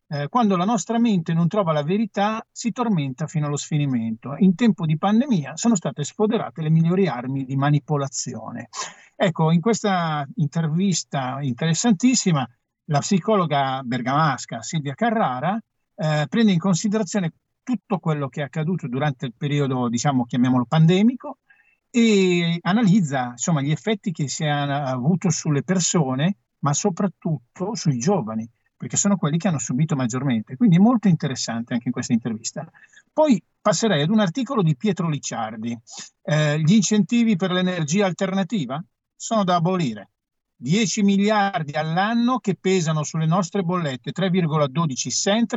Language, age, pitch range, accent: Italian, 50-69, 145-200 Hz, native